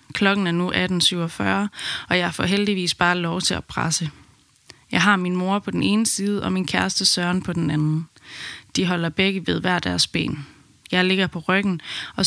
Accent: native